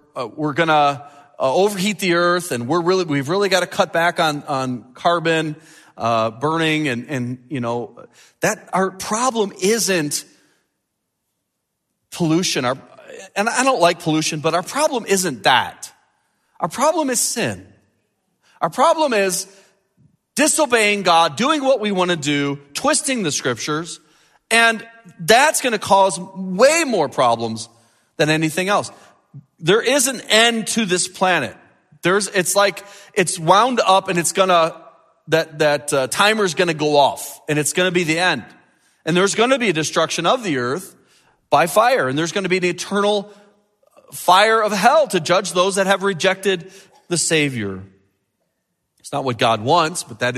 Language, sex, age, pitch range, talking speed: English, male, 40-59, 150-200 Hz, 160 wpm